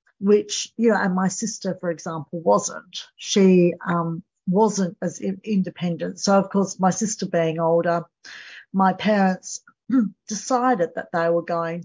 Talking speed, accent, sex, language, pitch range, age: 140 wpm, Australian, female, English, 175-210 Hz, 50-69